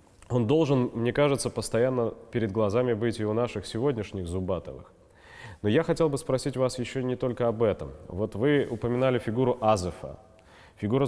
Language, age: Russian, 20-39